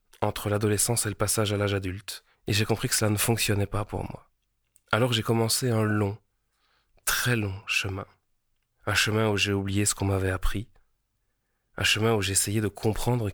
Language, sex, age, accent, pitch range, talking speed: French, male, 20-39, French, 100-115 Hz, 185 wpm